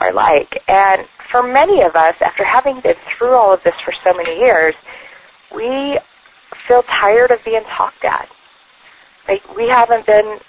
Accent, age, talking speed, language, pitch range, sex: American, 30-49, 165 wpm, English, 165-225 Hz, female